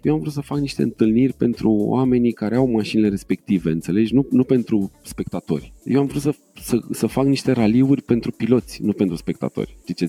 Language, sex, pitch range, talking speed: Romanian, male, 110-160 Hz, 200 wpm